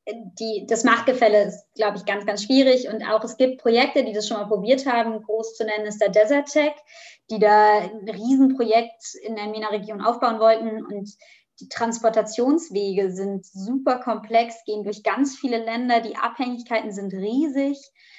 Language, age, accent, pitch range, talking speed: German, 20-39, German, 215-245 Hz, 170 wpm